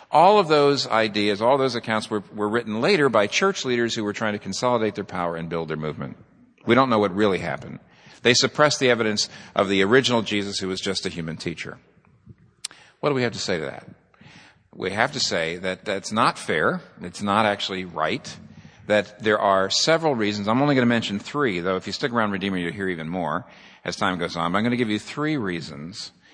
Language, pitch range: English, 100-135 Hz